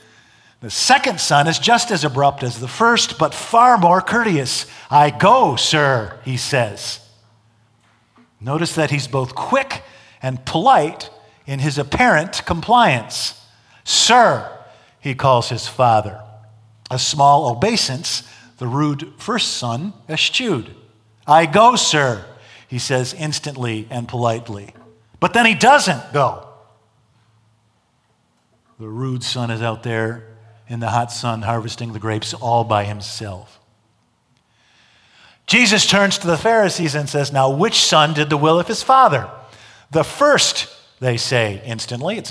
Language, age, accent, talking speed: English, 50-69, American, 135 wpm